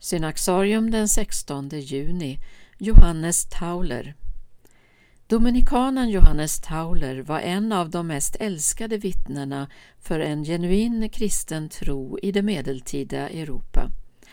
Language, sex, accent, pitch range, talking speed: Swedish, female, native, 145-200 Hz, 105 wpm